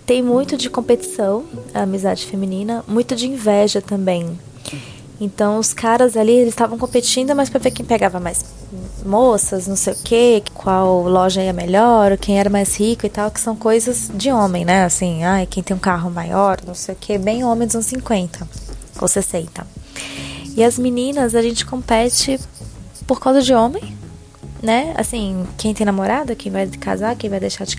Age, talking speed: 20-39, 180 wpm